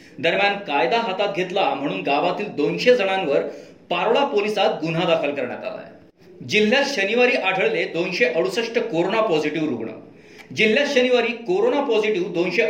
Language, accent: Marathi, native